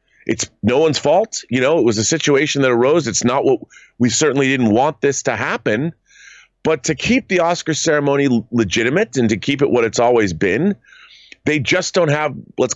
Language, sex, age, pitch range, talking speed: English, male, 40-59, 125-170 Hz, 200 wpm